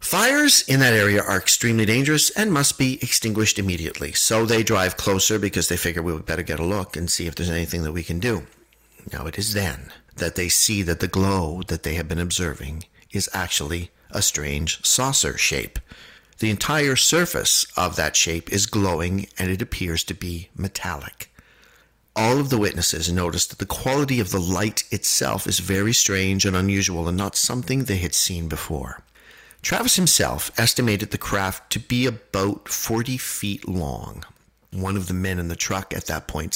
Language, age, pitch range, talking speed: English, 50-69, 85-110 Hz, 185 wpm